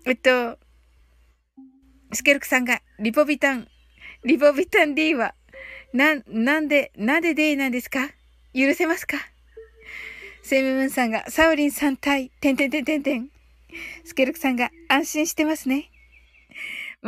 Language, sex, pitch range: Japanese, female, 250-320 Hz